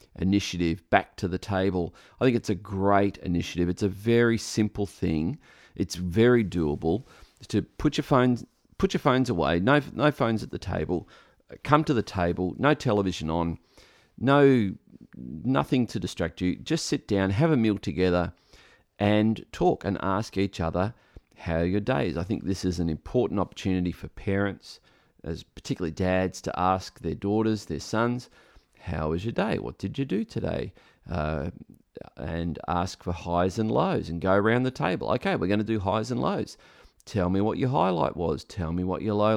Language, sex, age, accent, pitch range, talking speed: English, male, 40-59, Australian, 90-120 Hz, 185 wpm